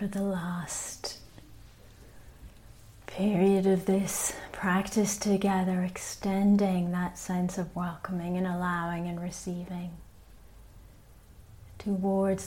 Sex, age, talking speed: female, 30-49, 85 wpm